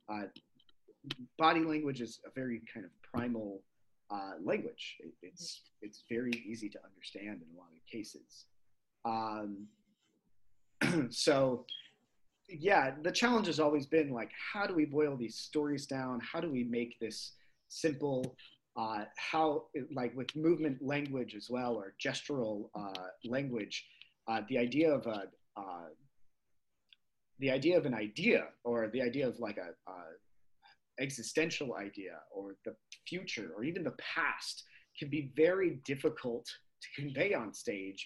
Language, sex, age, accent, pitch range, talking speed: English, male, 30-49, American, 105-140 Hz, 145 wpm